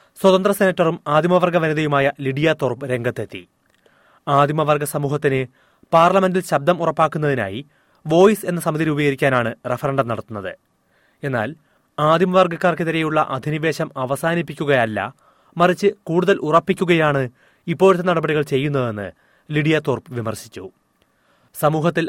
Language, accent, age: Malayalam, native, 30-49